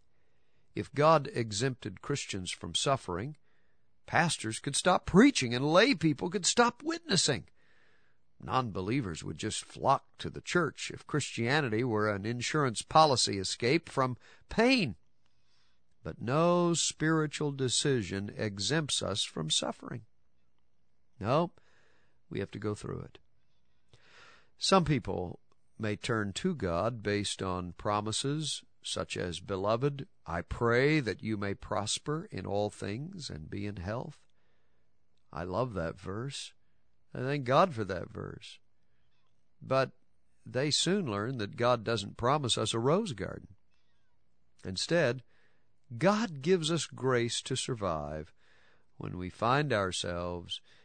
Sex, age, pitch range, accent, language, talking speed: male, 50-69, 95-145 Hz, American, English, 125 wpm